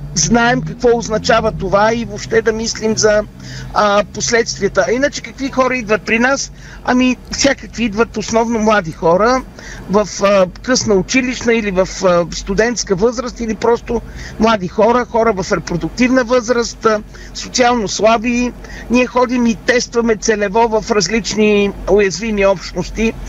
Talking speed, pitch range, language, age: 135 wpm, 200-235 Hz, Bulgarian, 50-69